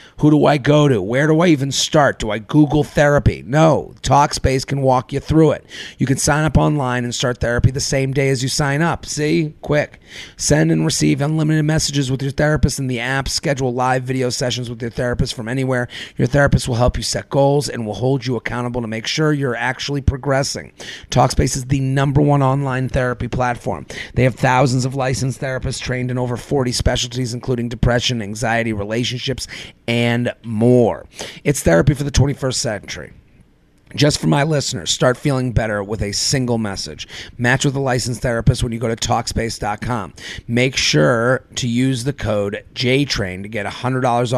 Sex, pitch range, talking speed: male, 115-140 Hz, 190 wpm